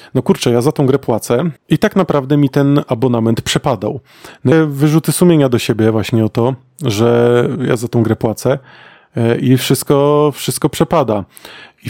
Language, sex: Polish, male